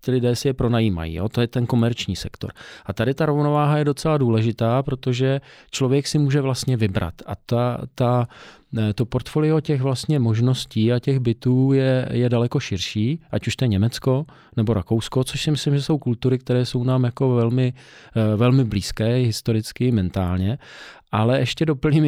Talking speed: 170 wpm